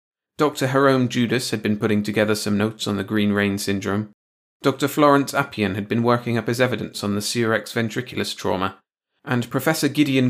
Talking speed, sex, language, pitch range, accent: 180 wpm, male, English, 105-140 Hz, British